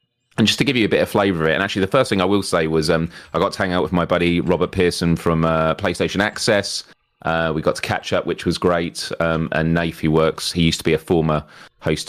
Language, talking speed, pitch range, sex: English, 280 wpm, 80-95 Hz, male